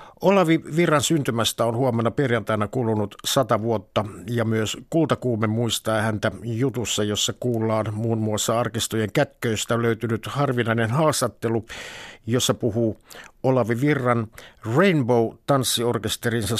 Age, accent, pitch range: 60-79, native, 110-130 Hz